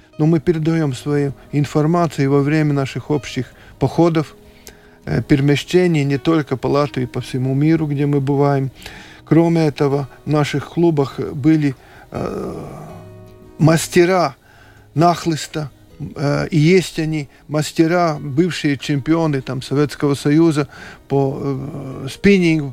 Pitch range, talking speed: 135-165 Hz, 105 wpm